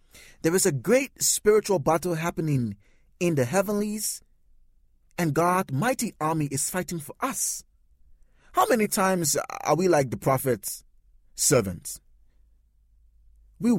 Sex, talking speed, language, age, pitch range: male, 120 wpm, English, 30-49, 135-205 Hz